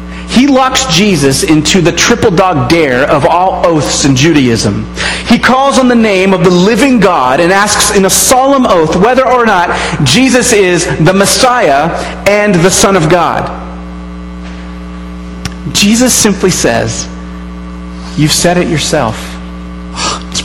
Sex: male